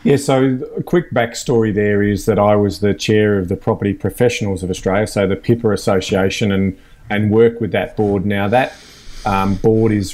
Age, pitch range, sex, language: 30-49, 100-120 Hz, male, English